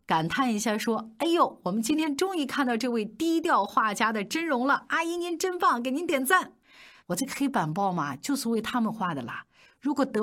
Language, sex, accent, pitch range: Chinese, female, native, 180-265 Hz